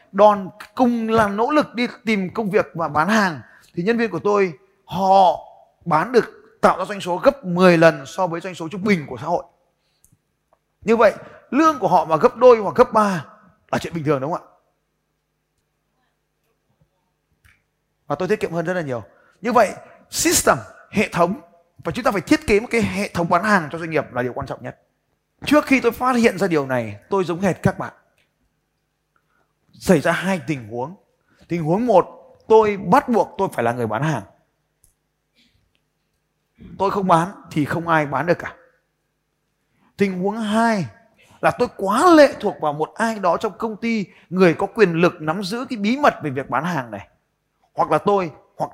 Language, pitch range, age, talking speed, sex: Vietnamese, 160-220 Hz, 20-39, 195 wpm, male